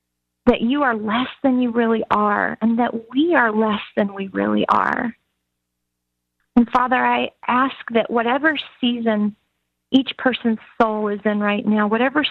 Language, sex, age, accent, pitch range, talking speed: English, female, 40-59, American, 210-245 Hz, 155 wpm